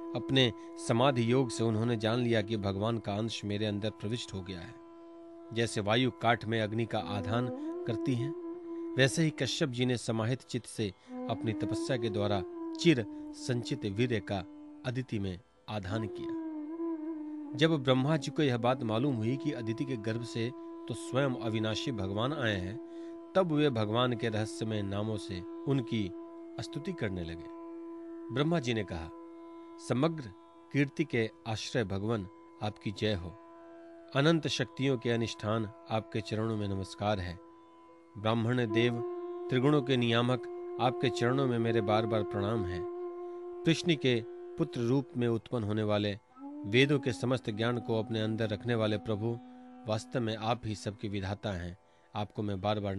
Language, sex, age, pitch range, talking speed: Hindi, male, 40-59, 110-155 Hz, 160 wpm